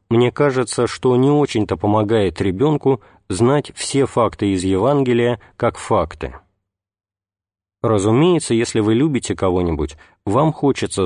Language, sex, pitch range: Russian, male, 95-125 Hz